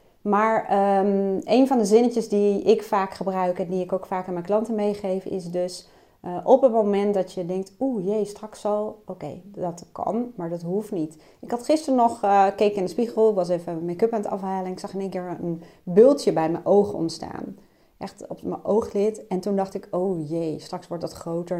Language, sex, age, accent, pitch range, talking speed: Dutch, female, 30-49, Dutch, 170-210 Hz, 220 wpm